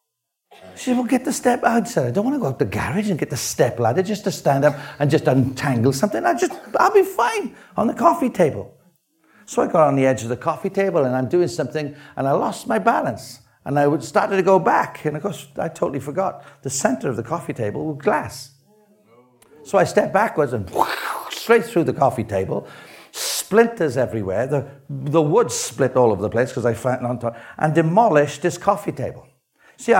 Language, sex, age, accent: English, male, 60-79, British